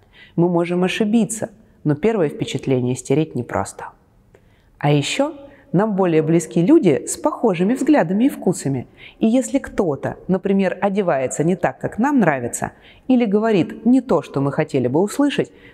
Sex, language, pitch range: female, Russian, 140-215 Hz